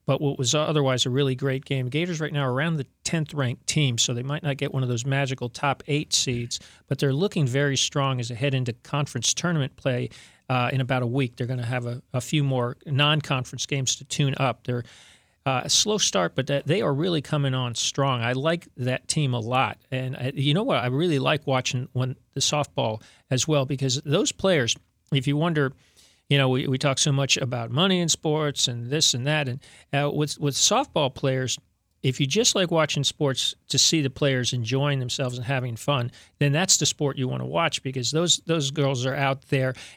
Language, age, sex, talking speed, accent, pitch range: English, 40-59, male, 220 wpm, American, 130-150 Hz